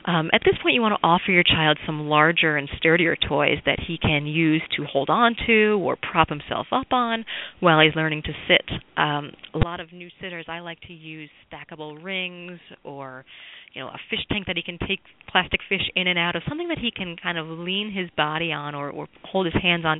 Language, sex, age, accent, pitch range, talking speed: English, female, 30-49, American, 150-190 Hz, 230 wpm